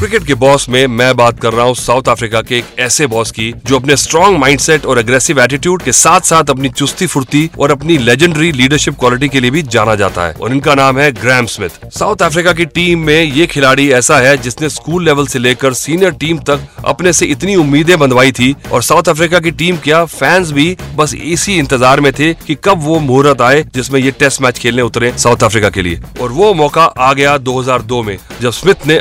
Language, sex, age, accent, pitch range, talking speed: Hindi, male, 30-49, native, 125-160 Hz, 220 wpm